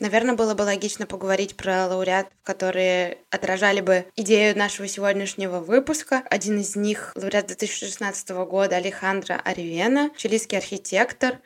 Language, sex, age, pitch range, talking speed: Russian, female, 20-39, 195-220 Hz, 125 wpm